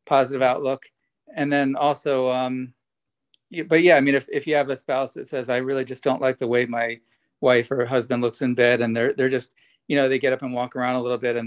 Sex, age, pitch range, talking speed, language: male, 40-59, 125-145 Hz, 250 wpm, English